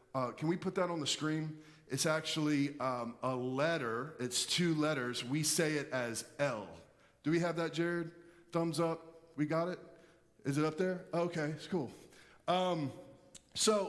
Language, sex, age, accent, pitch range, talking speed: English, male, 30-49, American, 145-180 Hz, 175 wpm